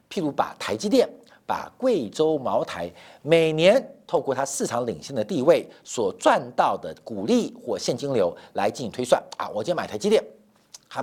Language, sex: Chinese, male